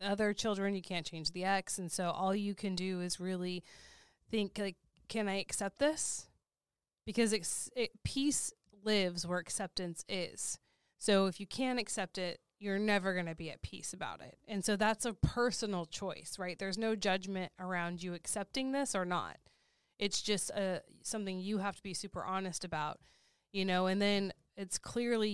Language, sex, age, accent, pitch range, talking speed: English, female, 20-39, American, 180-205 Hz, 180 wpm